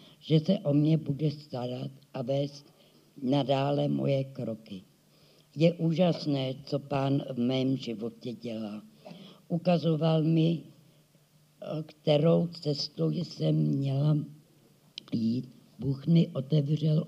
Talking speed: 100 wpm